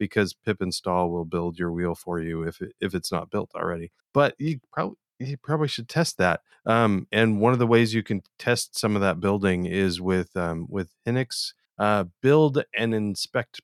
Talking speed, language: 195 wpm, English